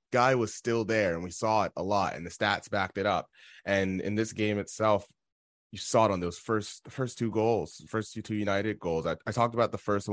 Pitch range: 95-115 Hz